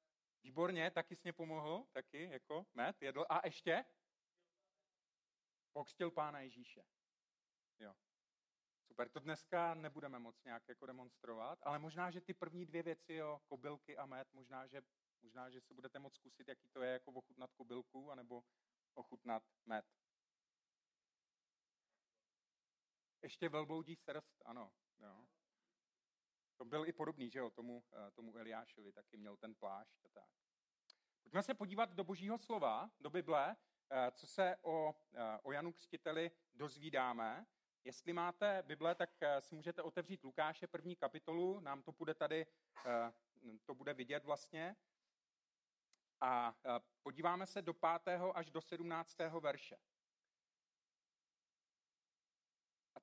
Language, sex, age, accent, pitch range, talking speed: Czech, male, 40-59, native, 130-170 Hz, 130 wpm